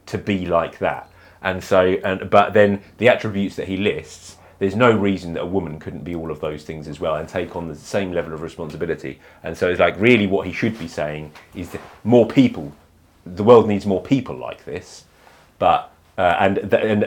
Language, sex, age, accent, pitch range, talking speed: English, male, 30-49, British, 85-105 Hz, 215 wpm